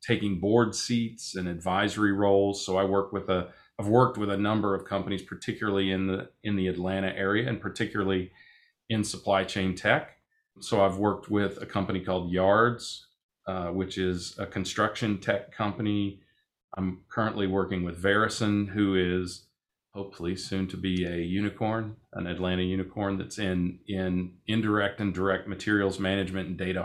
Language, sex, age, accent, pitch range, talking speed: English, male, 40-59, American, 95-105 Hz, 160 wpm